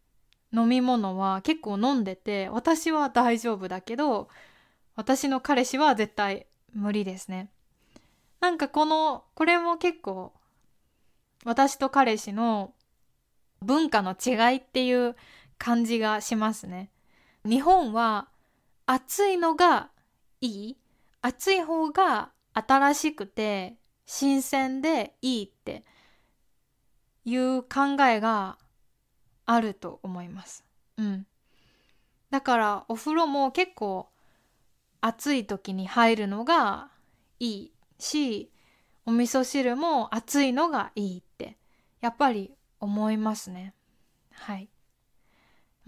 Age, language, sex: 20-39, Japanese, female